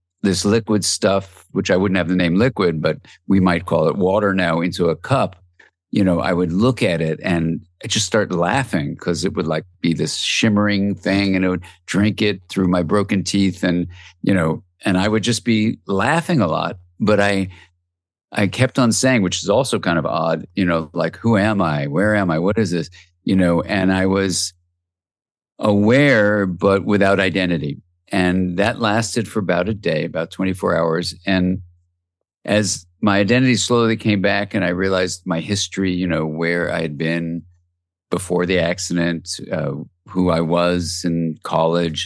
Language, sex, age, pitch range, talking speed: English, male, 50-69, 85-100 Hz, 185 wpm